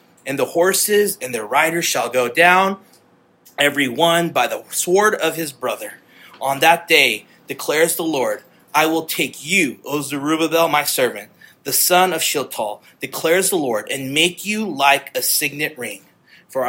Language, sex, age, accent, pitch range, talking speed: English, male, 30-49, American, 140-165 Hz, 165 wpm